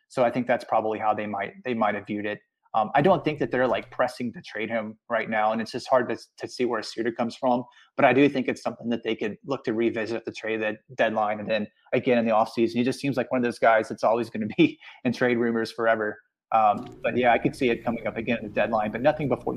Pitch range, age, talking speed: 110-125 Hz, 30-49, 280 wpm